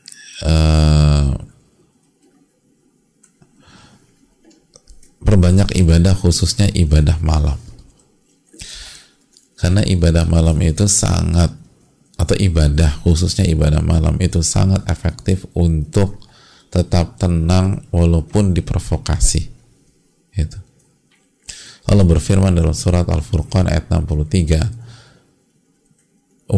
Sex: male